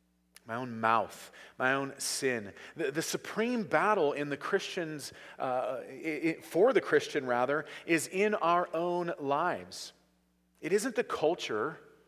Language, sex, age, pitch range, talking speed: English, male, 40-59, 115-185 Hz, 135 wpm